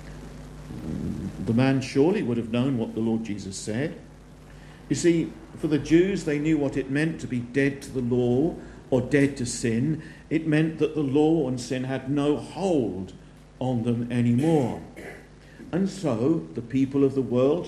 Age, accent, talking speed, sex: 50-69, British, 175 wpm, male